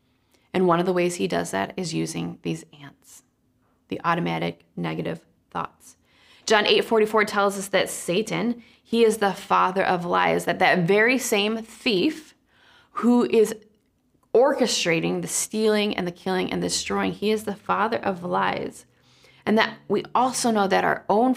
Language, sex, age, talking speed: English, female, 20-39, 160 wpm